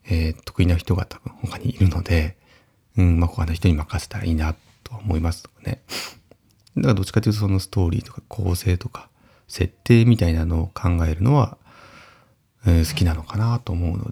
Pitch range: 90-115 Hz